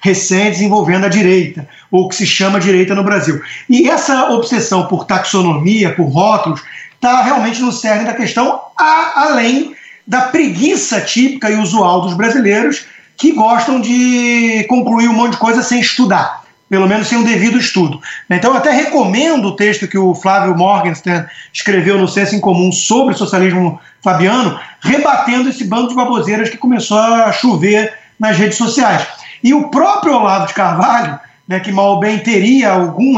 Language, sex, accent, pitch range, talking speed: Portuguese, male, Brazilian, 190-250 Hz, 165 wpm